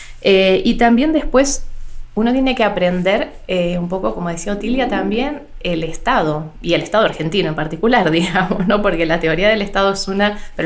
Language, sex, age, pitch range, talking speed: Spanish, female, 20-39, 170-215 Hz, 185 wpm